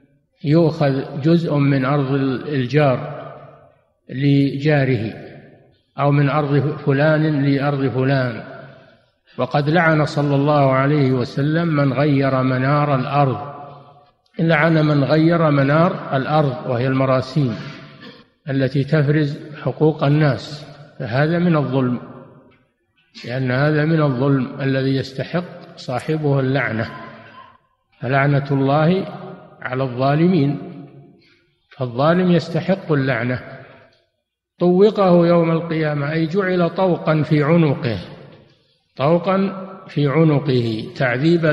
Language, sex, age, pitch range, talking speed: Arabic, male, 50-69, 135-160 Hz, 90 wpm